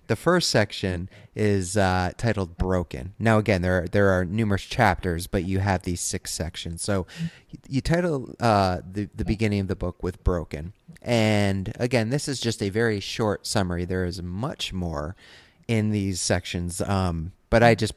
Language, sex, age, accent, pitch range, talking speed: English, male, 30-49, American, 95-115 Hz, 180 wpm